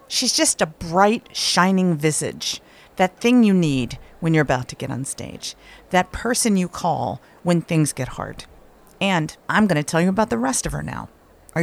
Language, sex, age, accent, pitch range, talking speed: English, female, 50-69, American, 145-190 Hz, 195 wpm